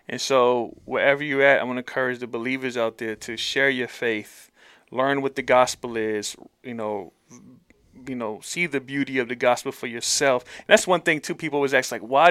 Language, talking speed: English, 215 wpm